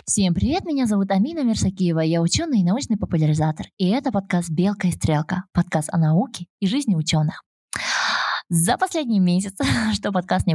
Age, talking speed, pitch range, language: 20-39, 165 wpm, 165-200 Hz, Russian